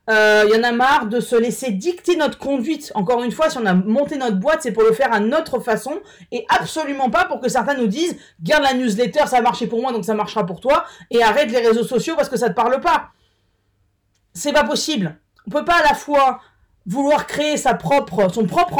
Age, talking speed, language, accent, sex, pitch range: 30-49, 250 wpm, French, French, female, 215-290 Hz